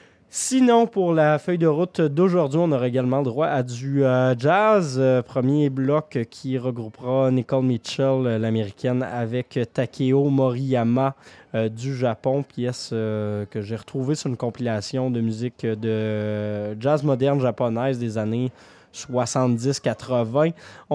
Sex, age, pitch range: male, 20-39, 120-145 Hz